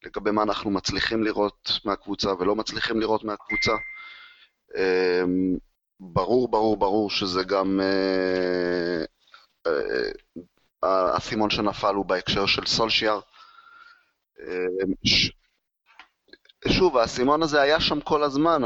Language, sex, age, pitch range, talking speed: Hebrew, male, 30-49, 100-125 Hz, 90 wpm